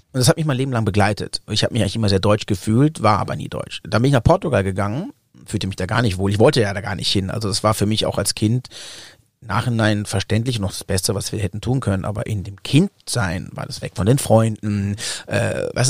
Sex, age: male, 30-49